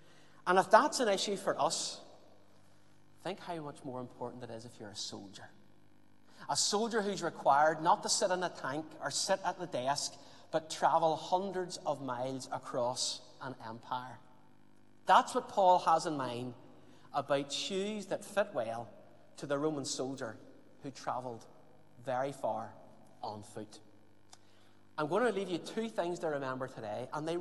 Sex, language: male, English